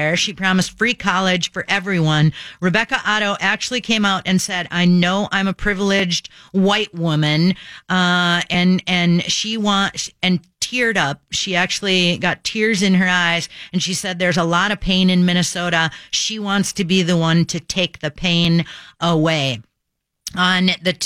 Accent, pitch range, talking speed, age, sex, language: American, 175-205 Hz, 165 wpm, 40-59, female, English